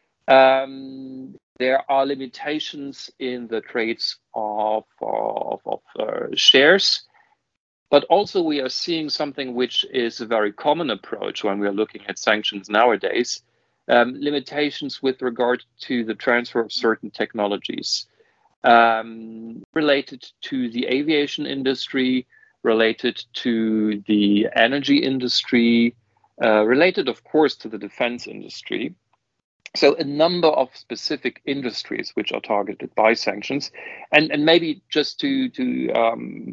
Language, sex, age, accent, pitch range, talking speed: English, male, 40-59, German, 115-140 Hz, 130 wpm